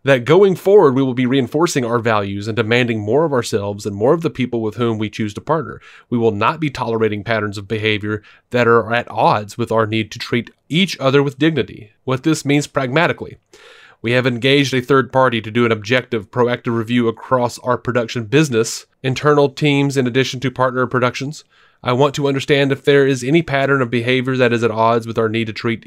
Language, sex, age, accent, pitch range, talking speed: English, male, 30-49, American, 115-140 Hz, 215 wpm